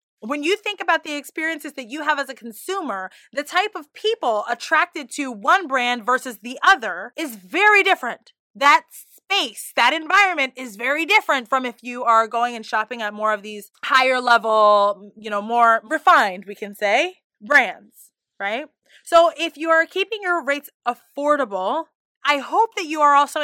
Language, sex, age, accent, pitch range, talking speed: English, female, 20-39, American, 220-305 Hz, 175 wpm